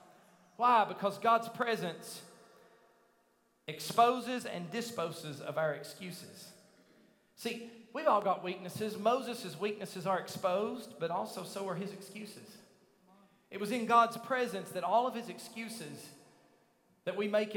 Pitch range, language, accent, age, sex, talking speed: 180-230 Hz, English, American, 40-59, male, 130 wpm